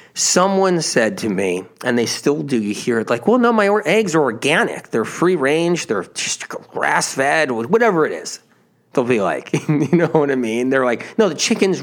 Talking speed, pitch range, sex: 215 wpm, 120-185 Hz, male